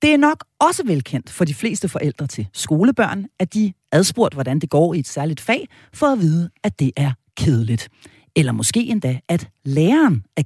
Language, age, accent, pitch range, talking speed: Danish, 40-59, native, 135-225 Hz, 200 wpm